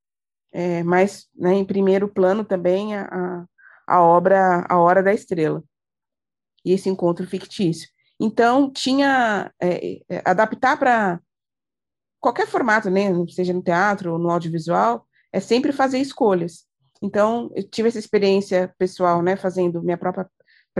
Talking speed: 135 wpm